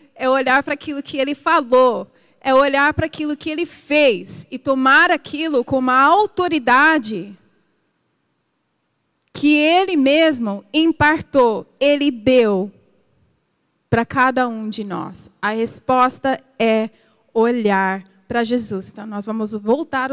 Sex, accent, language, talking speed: female, Brazilian, Portuguese, 120 wpm